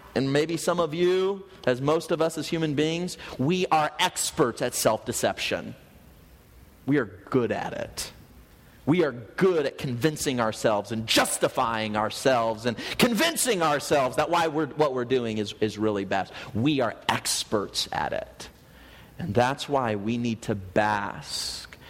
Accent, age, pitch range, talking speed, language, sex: American, 30-49, 105-145 Hz, 155 wpm, English, male